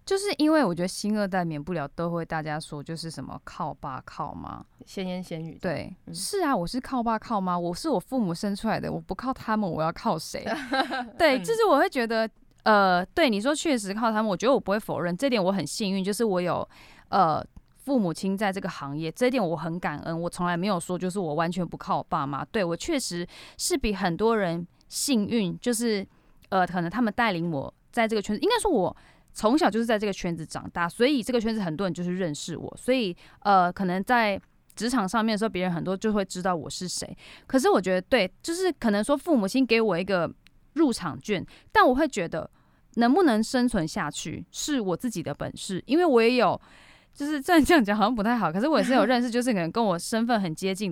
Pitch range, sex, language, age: 180-255 Hz, female, Chinese, 10-29